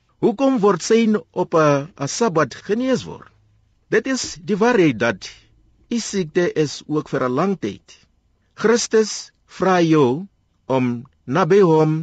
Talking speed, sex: 140 wpm, male